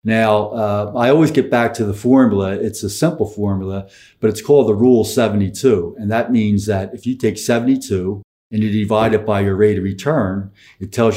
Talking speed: 205 wpm